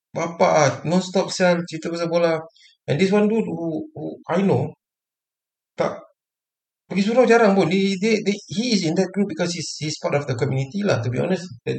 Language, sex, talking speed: Malay, male, 205 wpm